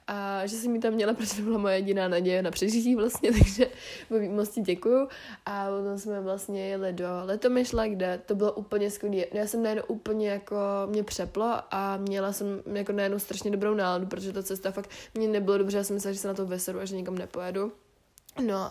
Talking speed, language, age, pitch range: 220 wpm, Czech, 20-39, 195-215 Hz